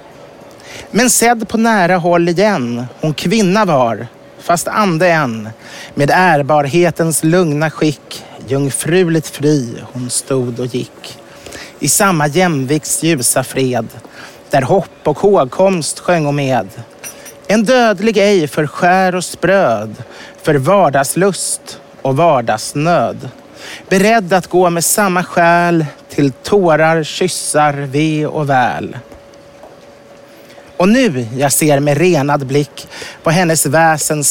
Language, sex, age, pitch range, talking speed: English, male, 30-49, 140-185 Hz, 120 wpm